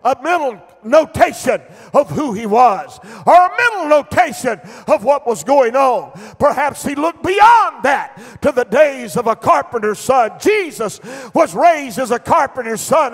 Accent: American